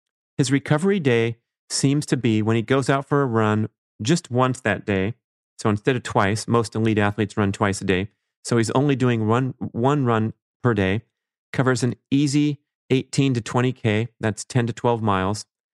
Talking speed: 185 wpm